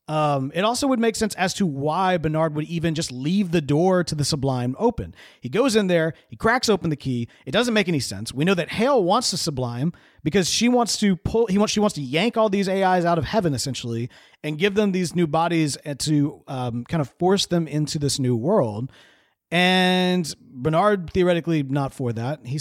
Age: 40-59